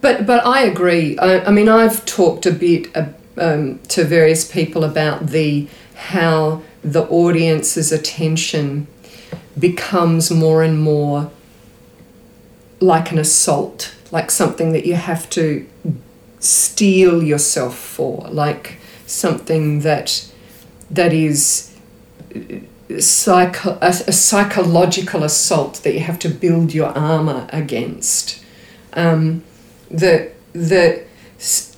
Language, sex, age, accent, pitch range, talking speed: English, female, 40-59, Australian, 160-215 Hz, 110 wpm